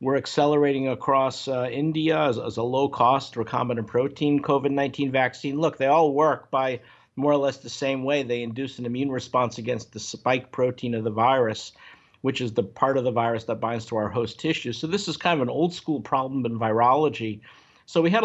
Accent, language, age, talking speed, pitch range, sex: American, English, 50-69, 205 wpm, 120-140 Hz, male